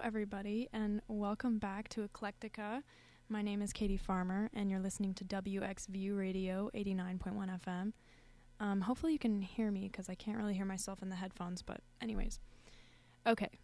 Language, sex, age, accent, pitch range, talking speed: English, female, 10-29, American, 185-215 Hz, 165 wpm